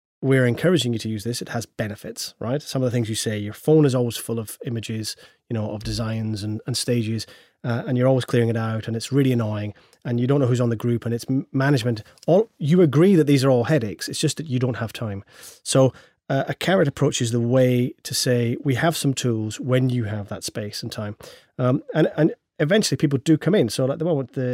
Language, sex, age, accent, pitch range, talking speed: English, male, 30-49, British, 115-140 Hz, 245 wpm